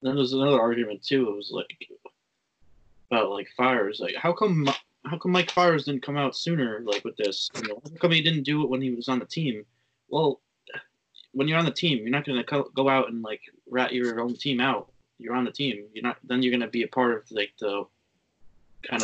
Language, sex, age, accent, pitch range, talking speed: English, male, 20-39, American, 105-135 Hz, 230 wpm